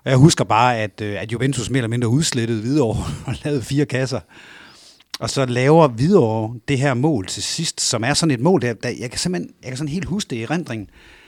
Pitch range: 115-150 Hz